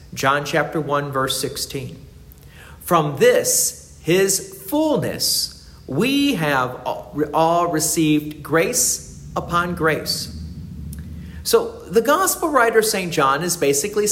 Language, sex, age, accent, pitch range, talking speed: English, male, 50-69, American, 135-215 Hz, 100 wpm